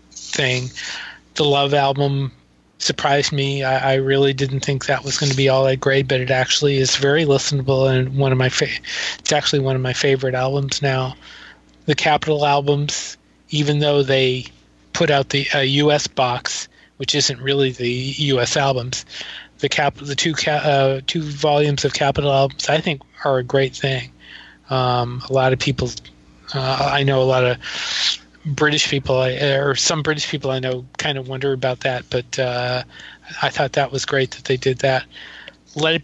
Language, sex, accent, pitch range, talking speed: English, male, American, 130-145 Hz, 185 wpm